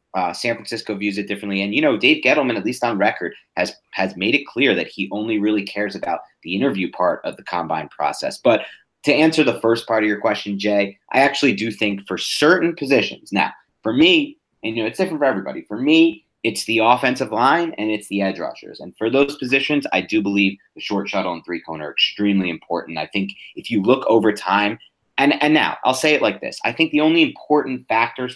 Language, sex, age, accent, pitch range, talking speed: English, male, 30-49, American, 100-130 Hz, 235 wpm